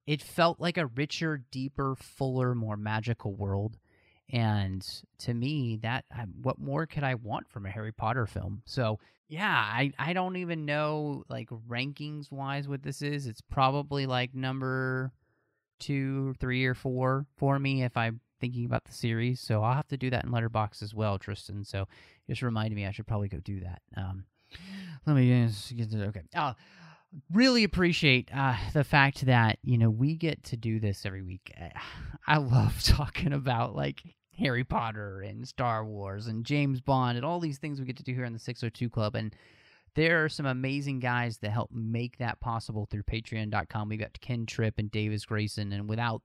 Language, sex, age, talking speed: English, male, 30-49, 185 wpm